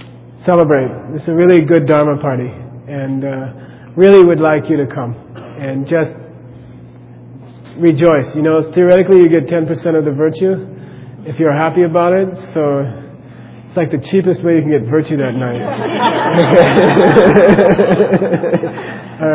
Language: English